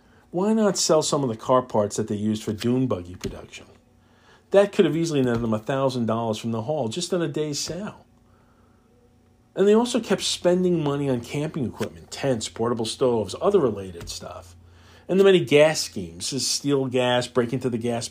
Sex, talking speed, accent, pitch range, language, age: male, 185 wpm, American, 110-150 Hz, English, 50-69